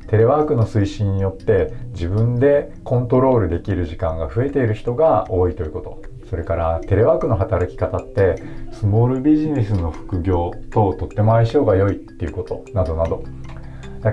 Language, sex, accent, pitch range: Japanese, male, native, 95-120 Hz